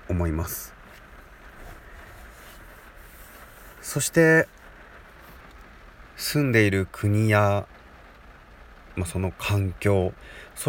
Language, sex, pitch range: Japanese, male, 90-120 Hz